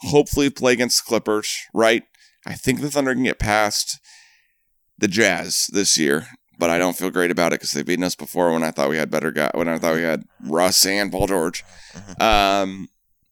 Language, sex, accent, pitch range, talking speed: English, male, American, 85-110 Hz, 205 wpm